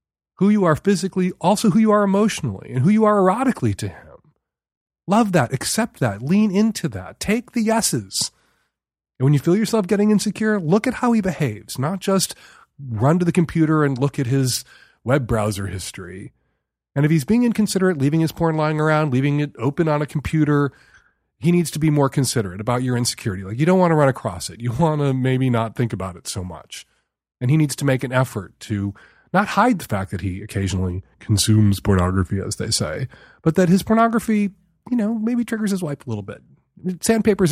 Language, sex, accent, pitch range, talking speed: English, male, American, 120-175 Hz, 205 wpm